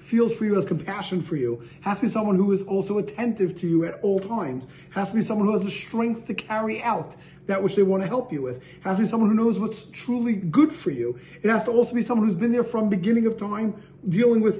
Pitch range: 185-225 Hz